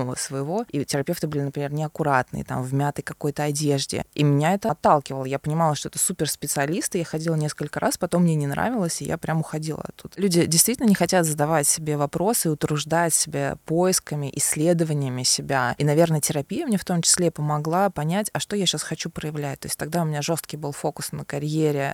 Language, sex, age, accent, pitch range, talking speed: Russian, female, 20-39, native, 140-170 Hz, 195 wpm